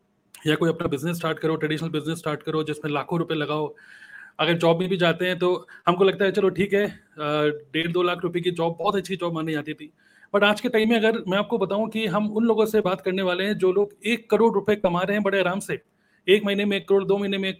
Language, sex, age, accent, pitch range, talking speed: Hindi, male, 30-49, native, 160-195 Hz, 265 wpm